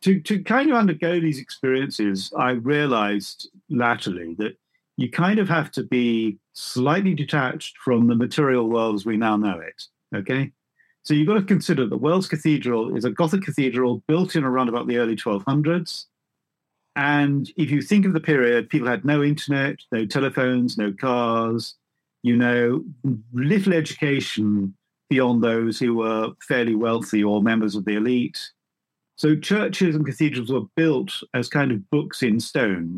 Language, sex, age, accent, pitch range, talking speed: English, male, 50-69, British, 115-155 Hz, 165 wpm